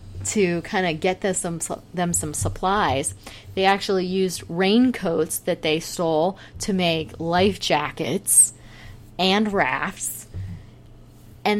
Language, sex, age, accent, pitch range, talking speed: English, female, 30-49, American, 175-215 Hz, 110 wpm